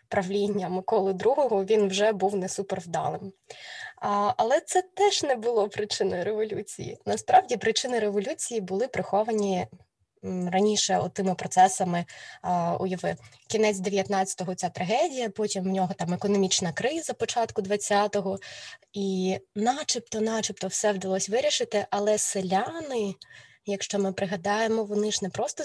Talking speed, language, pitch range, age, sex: 120 wpm, Ukrainian, 190-215 Hz, 20-39, female